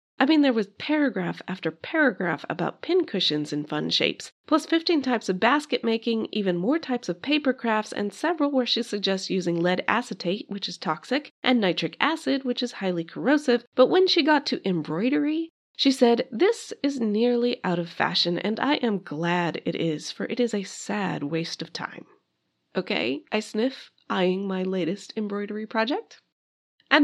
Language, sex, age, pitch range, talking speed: English, female, 30-49, 185-265 Hz, 175 wpm